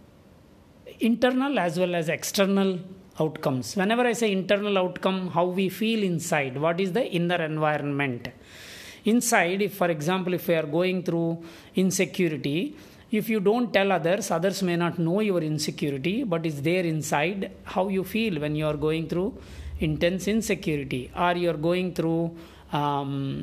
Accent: Indian